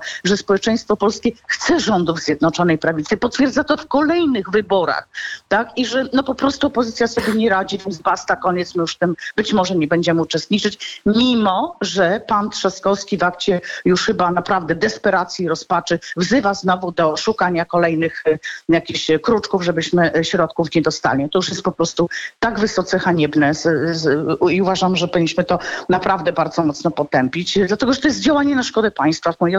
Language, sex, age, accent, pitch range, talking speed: Polish, female, 40-59, native, 175-235 Hz, 175 wpm